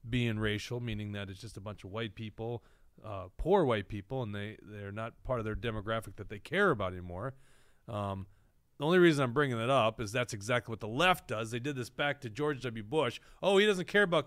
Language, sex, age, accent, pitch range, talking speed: English, male, 30-49, American, 110-150 Hz, 235 wpm